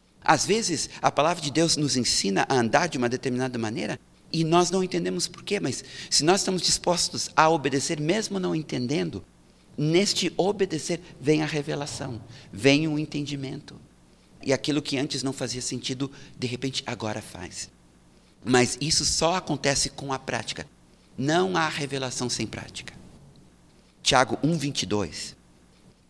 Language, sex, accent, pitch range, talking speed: Portuguese, male, Brazilian, 115-150 Hz, 145 wpm